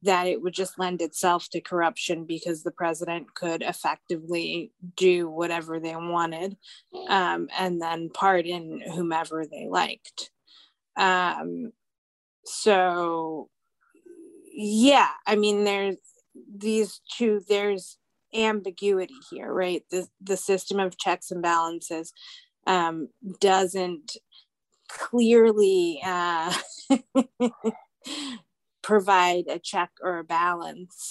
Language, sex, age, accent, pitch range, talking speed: English, female, 20-39, American, 170-210 Hz, 100 wpm